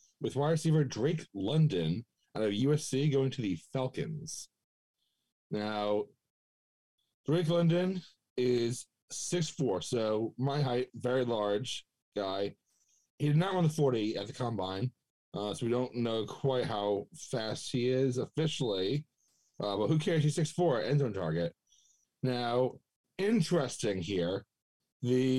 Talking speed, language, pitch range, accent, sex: 130 wpm, English, 100-145 Hz, American, male